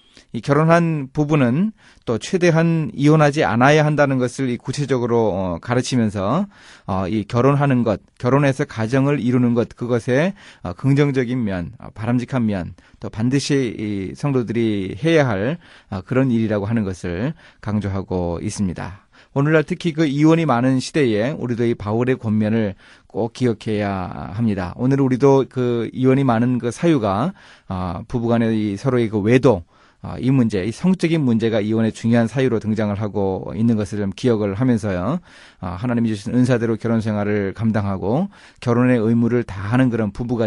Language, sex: Korean, male